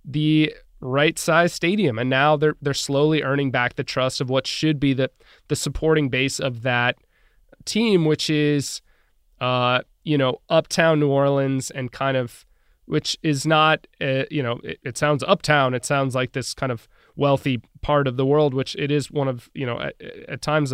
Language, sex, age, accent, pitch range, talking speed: English, male, 20-39, American, 125-150 Hz, 190 wpm